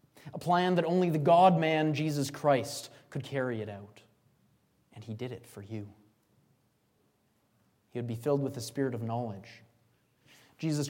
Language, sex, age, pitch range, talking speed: English, male, 20-39, 115-155 Hz, 155 wpm